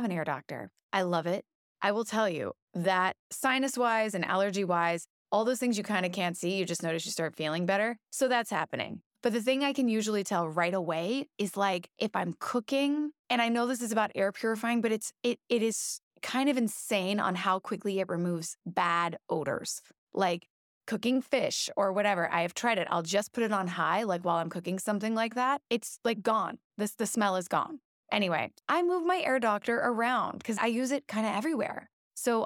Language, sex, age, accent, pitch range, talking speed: English, female, 20-39, American, 175-235 Hz, 215 wpm